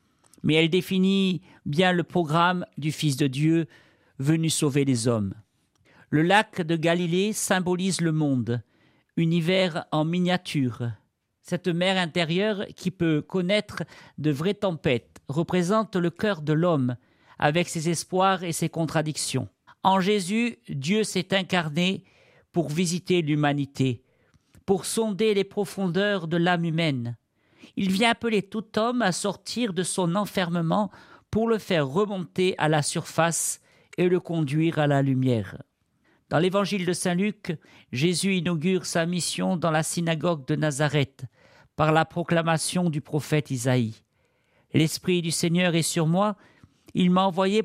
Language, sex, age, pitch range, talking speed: French, male, 50-69, 150-185 Hz, 140 wpm